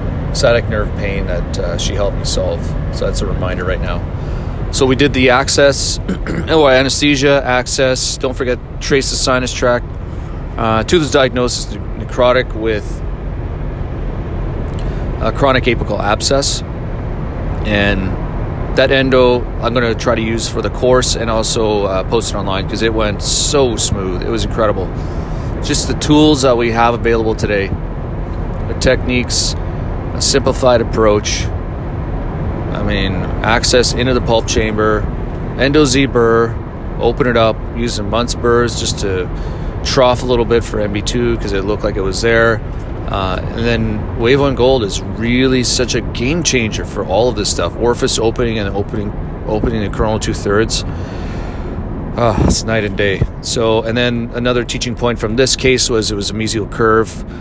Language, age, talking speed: English, 30-49, 165 wpm